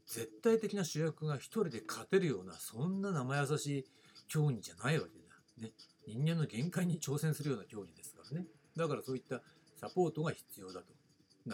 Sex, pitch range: male, 125-180 Hz